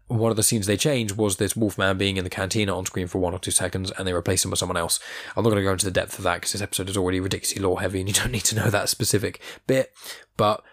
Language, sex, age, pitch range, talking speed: English, male, 10-29, 95-120 Hz, 315 wpm